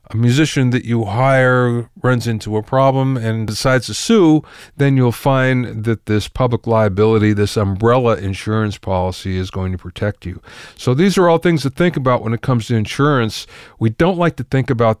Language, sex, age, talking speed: English, male, 40-59, 190 wpm